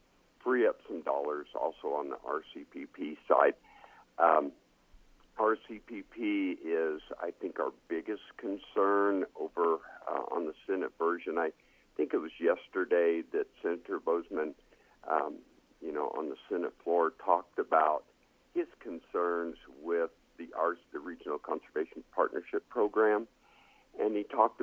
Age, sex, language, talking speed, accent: 50-69, male, English, 130 wpm, American